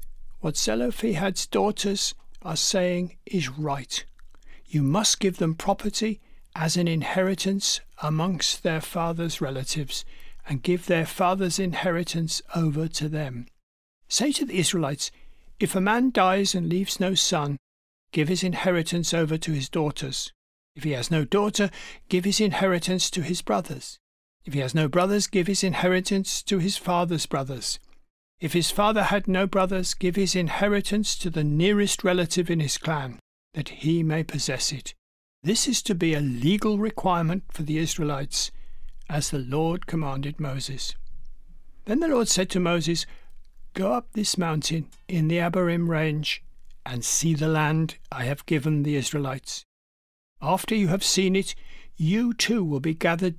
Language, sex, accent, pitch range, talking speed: English, male, British, 155-190 Hz, 155 wpm